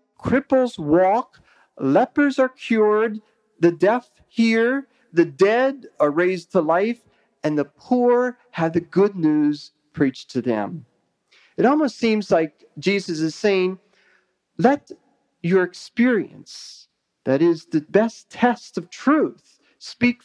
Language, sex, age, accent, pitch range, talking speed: English, male, 40-59, American, 155-225 Hz, 125 wpm